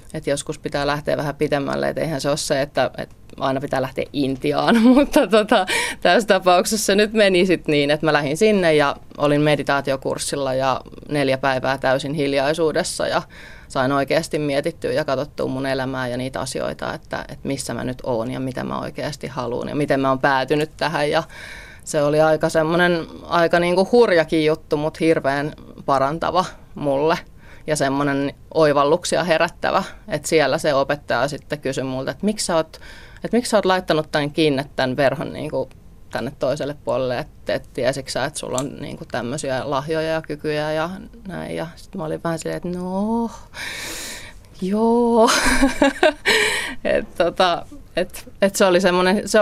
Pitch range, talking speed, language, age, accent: 140-180 Hz, 165 wpm, Finnish, 20-39, native